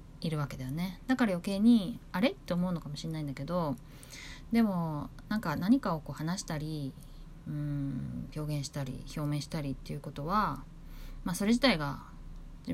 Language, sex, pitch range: Japanese, female, 150-200 Hz